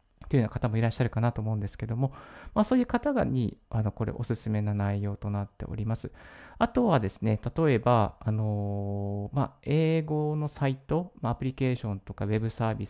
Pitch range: 105-140 Hz